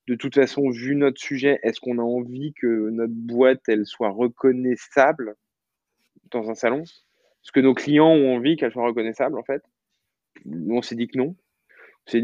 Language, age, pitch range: French, 20-39, 110-130 Hz